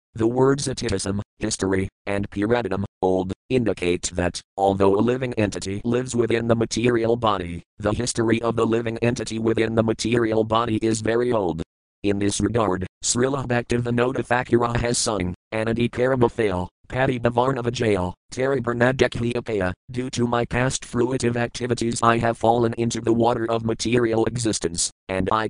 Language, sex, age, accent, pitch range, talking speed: English, male, 40-59, American, 105-125 Hz, 150 wpm